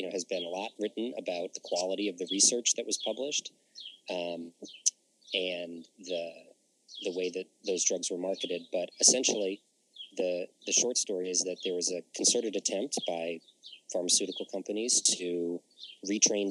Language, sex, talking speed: English, male, 160 wpm